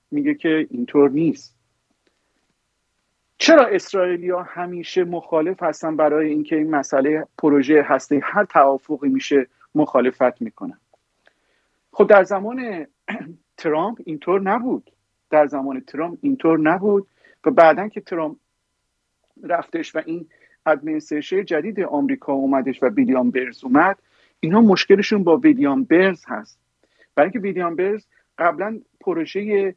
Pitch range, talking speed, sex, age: 145-205 Hz, 115 wpm, male, 50-69